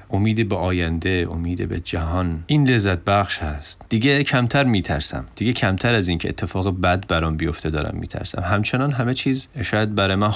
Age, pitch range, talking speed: 30-49, 85-105 Hz, 160 wpm